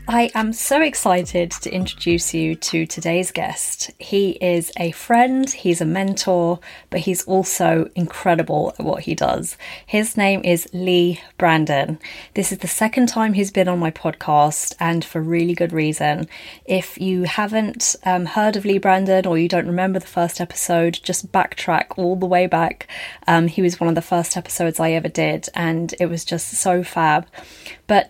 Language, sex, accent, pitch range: English, female, British, 170-195 Hz